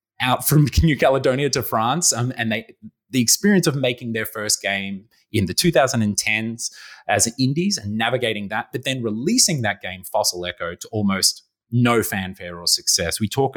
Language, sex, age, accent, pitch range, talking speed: English, male, 20-39, Australian, 95-125 Hz, 175 wpm